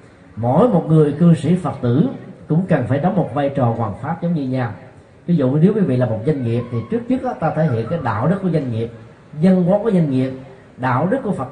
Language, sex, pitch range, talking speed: Vietnamese, male, 125-175 Hz, 260 wpm